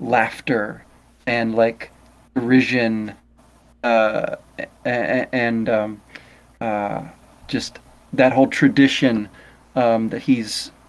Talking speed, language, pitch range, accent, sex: 70 wpm, English, 110-140 Hz, American, male